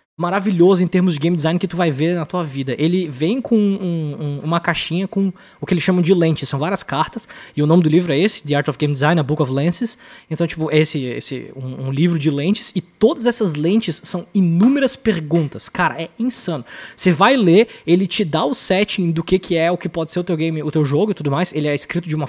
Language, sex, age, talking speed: Portuguese, male, 20-39, 250 wpm